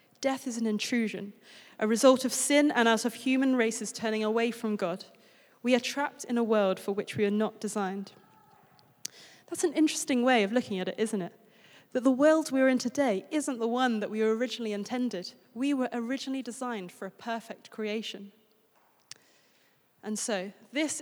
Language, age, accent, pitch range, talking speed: English, 20-39, British, 215-270 Hz, 185 wpm